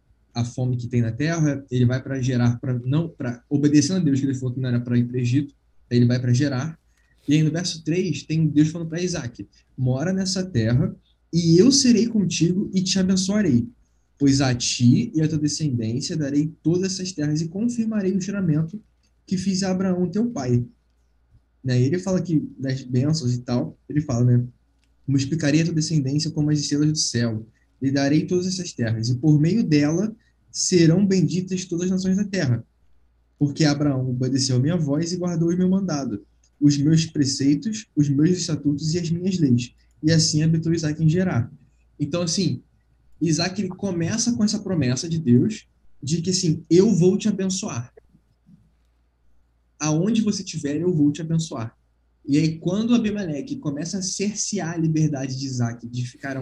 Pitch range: 125-180 Hz